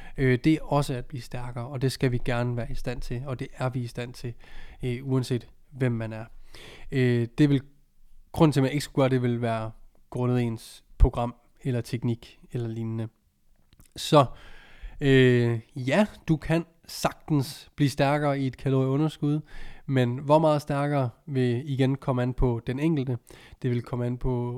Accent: native